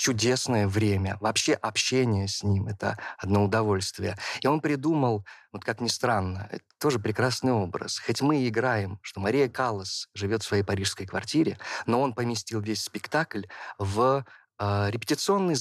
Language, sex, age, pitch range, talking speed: Russian, male, 20-39, 100-125 Hz, 160 wpm